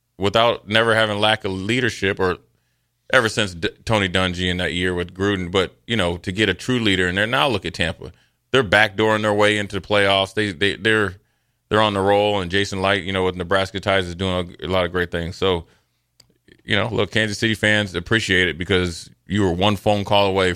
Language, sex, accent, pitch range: English, male, American, 90-110 Hz